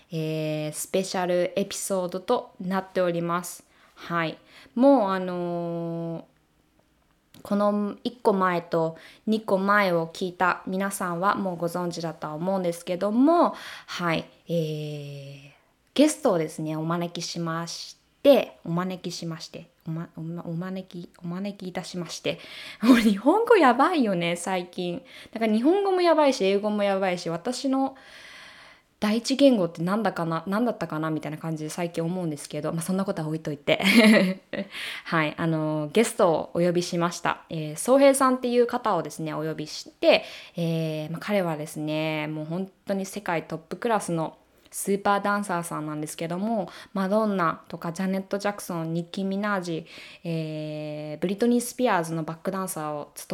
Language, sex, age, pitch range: Japanese, female, 20-39, 165-210 Hz